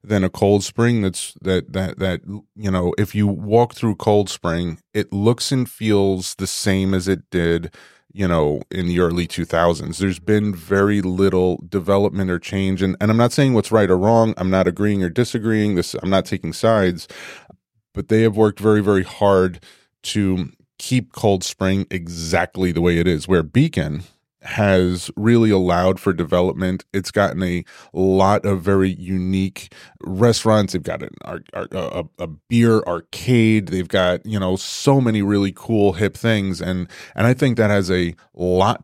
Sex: male